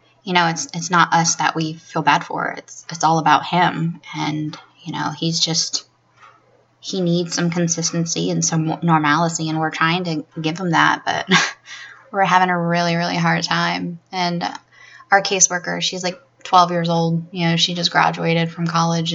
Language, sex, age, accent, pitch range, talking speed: English, female, 10-29, American, 160-175 Hz, 180 wpm